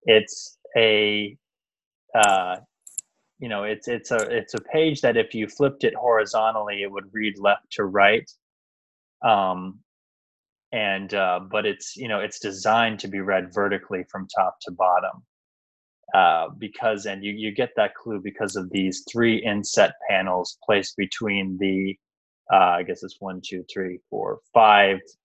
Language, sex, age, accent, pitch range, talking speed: English, male, 20-39, American, 95-120 Hz, 155 wpm